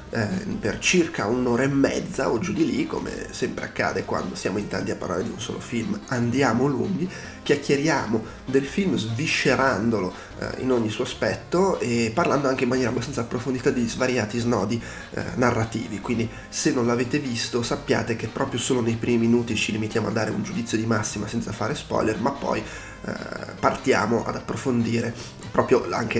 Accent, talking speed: native, 175 wpm